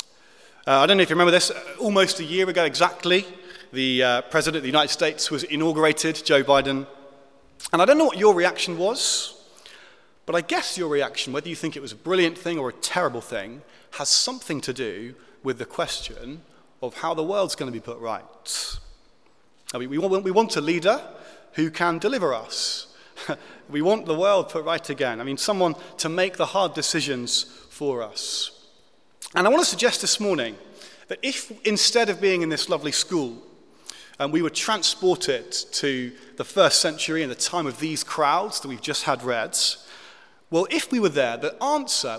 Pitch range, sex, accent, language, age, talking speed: 140-200 Hz, male, British, English, 30-49, 195 wpm